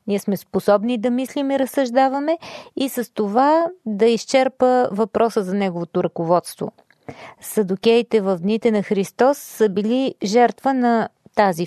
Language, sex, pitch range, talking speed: Bulgarian, female, 200-255 Hz, 135 wpm